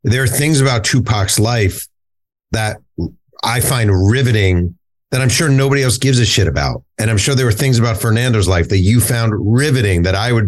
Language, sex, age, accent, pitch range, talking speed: English, male, 40-59, American, 100-130 Hz, 200 wpm